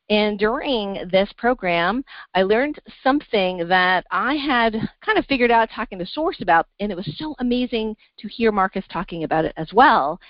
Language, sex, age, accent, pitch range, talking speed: English, female, 40-59, American, 170-225 Hz, 180 wpm